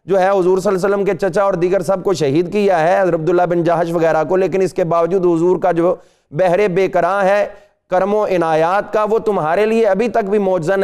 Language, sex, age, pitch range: Urdu, male, 30-49, 180-210 Hz